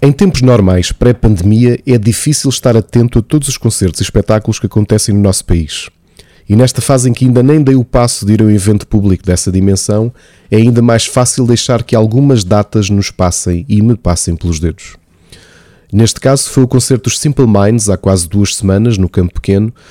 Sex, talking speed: male, 200 wpm